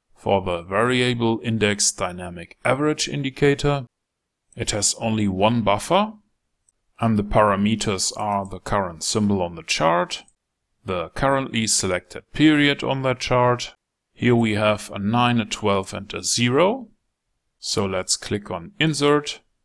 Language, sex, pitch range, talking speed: English, male, 100-125 Hz, 135 wpm